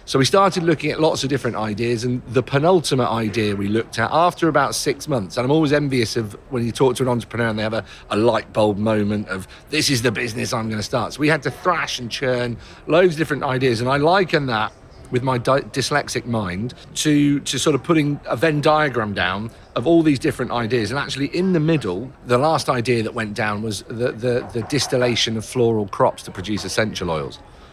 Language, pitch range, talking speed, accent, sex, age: English, 110-140 Hz, 225 wpm, British, male, 40-59